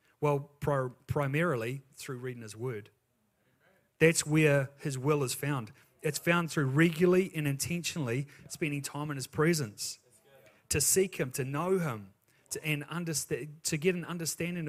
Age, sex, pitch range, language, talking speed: 30-49, male, 120-155 Hz, English, 140 wpm